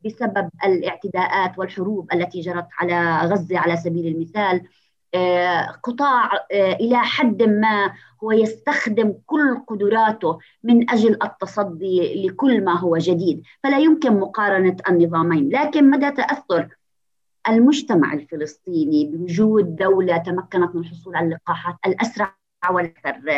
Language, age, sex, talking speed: Arabic, 30-49, female, 110 wpm